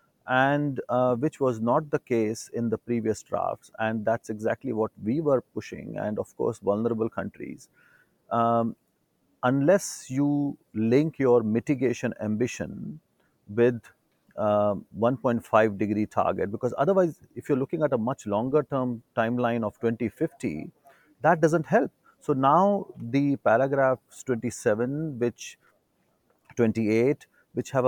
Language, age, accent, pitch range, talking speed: English, 30-49, Indian, 105-130 Hz, 130 wpm